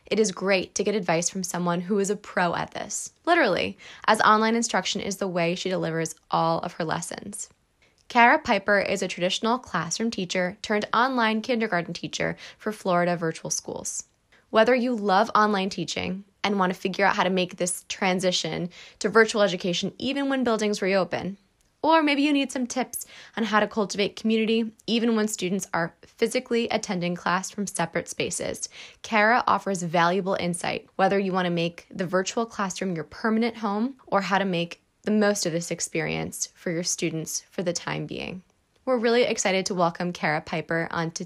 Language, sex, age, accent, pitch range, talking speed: English, female, 20-39, American, 175-225 Hz, 180 wpm